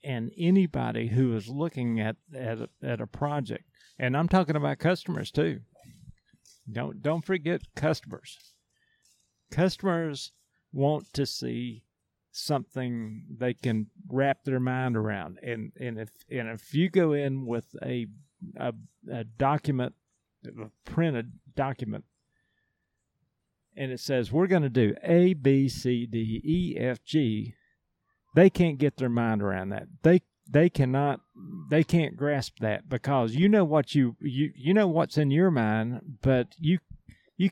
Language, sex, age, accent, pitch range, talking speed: English, male, 50-69, American, 120-170 Hz, 145 wpm